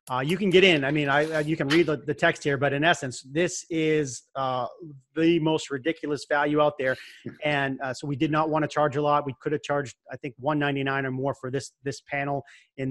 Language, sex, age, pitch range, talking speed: English, male, 30-49, 130-155 Hz, 255 wpm